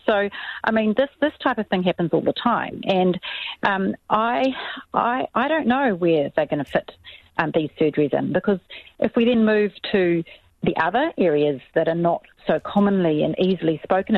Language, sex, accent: English, female, Australian